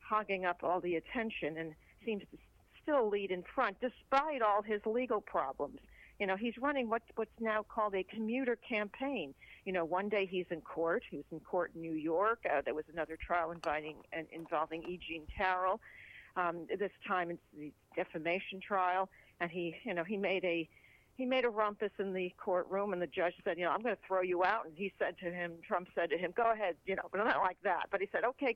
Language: English